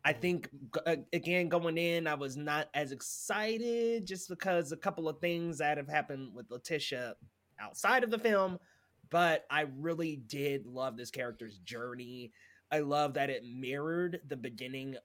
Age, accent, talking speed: 20-39, American, 160 wpm